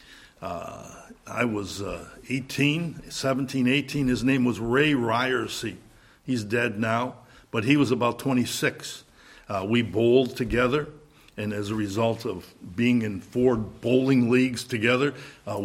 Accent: American